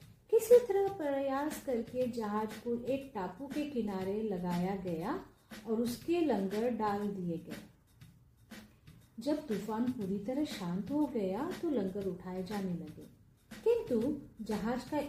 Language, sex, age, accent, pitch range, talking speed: Hindi, female, 40-59, native, 200-295 Hz, 130 wpm